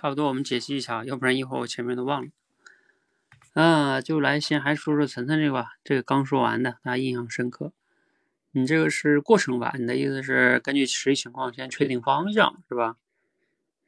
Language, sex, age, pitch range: Chinese, male, 20-39, 120-150 Hz